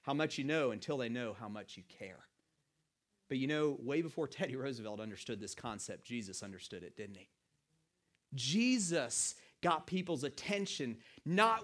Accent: American